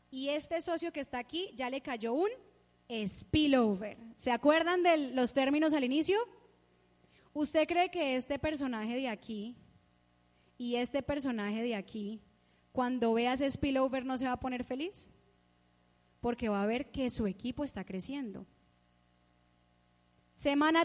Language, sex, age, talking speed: Spanish, female, 20-39, 145 wpm